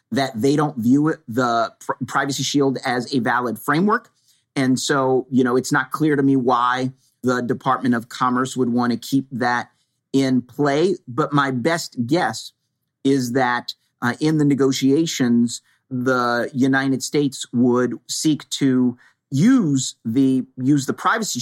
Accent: American